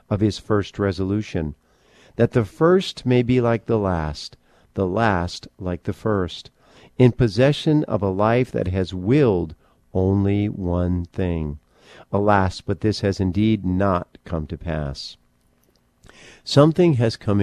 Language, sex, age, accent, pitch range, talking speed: English, male, 50-69, American, 90-115 Hz, 140 wpm